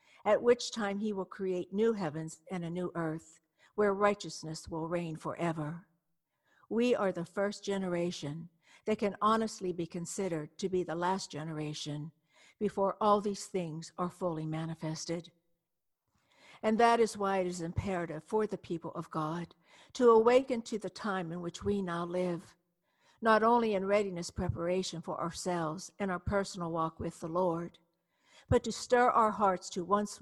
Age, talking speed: 60-79, 165 wpm